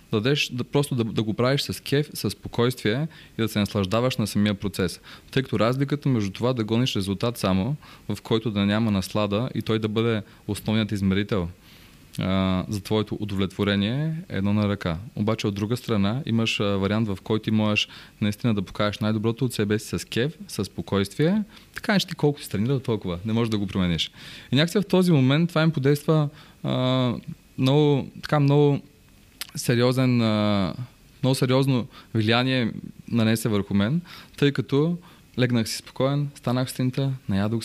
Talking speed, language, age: 170 wpm, Bulgarian, 20-39